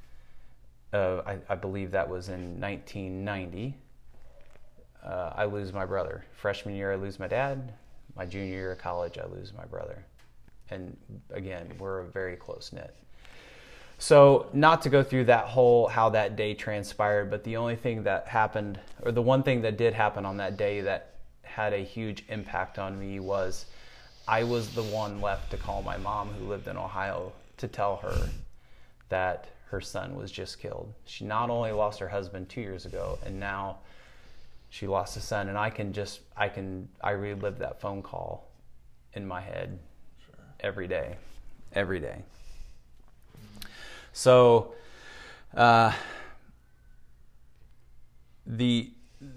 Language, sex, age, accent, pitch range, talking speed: English, male, 20-39, American, 95-115 Hz, 155 wpm